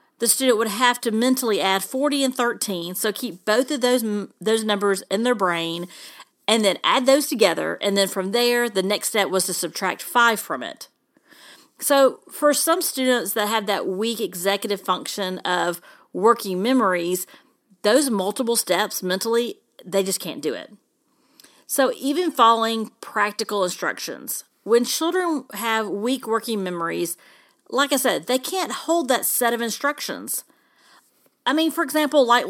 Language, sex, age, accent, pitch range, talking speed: English, female, 40-59, American, 195-270 Hz, 160 wpm